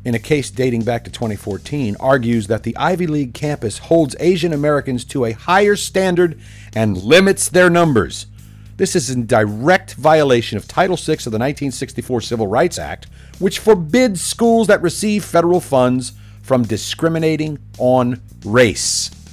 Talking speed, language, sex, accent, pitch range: 150 wpm, English, male, American, 105-145 Hz